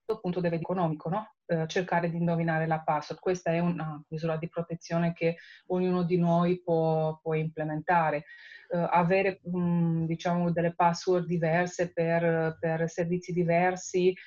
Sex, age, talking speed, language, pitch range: female, 30-49, 145 wpm, Italian, 165-185 Hz